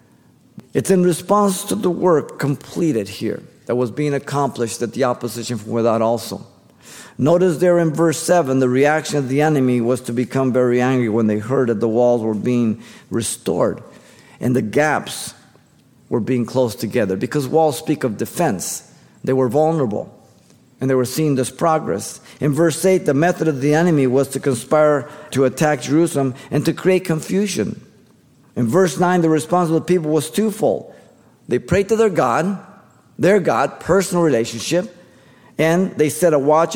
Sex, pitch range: male, 125-175 Hz